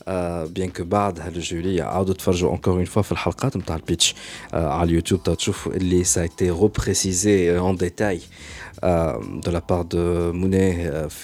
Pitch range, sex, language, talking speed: 85-100 Hz, male, Arabic, 155 wpm